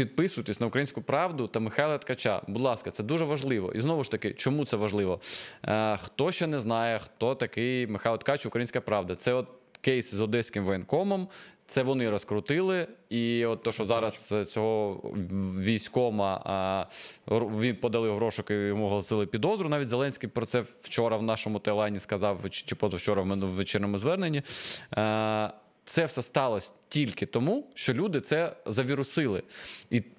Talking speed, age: 155 wpm, 20-39